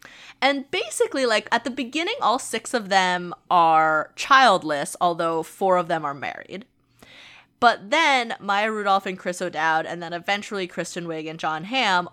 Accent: American